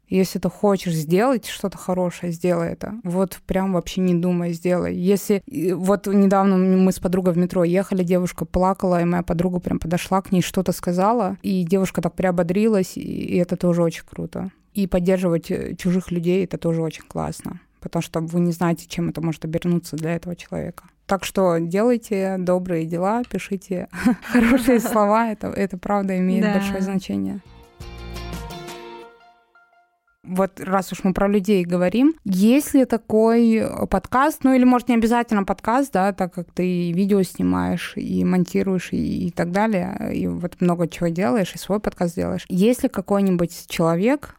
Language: Russian